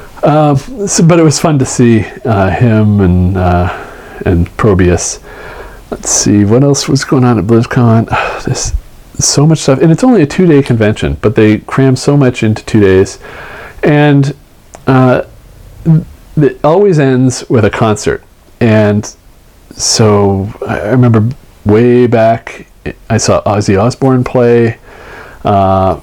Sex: male